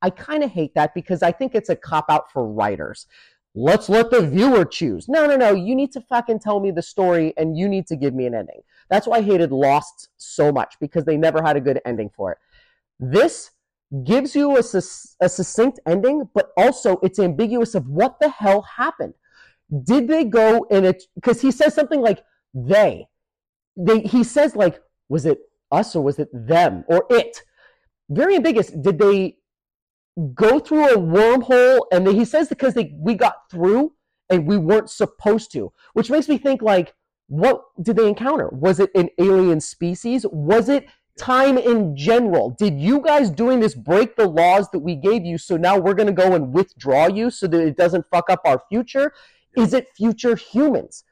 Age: 30-49